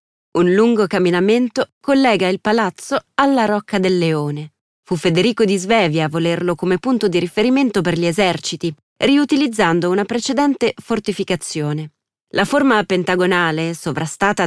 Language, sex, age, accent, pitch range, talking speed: Italian, female, 30-49, native, 170-230 Hz, 130 wpm